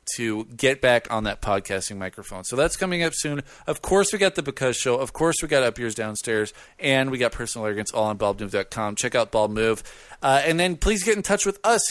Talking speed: 230 wpm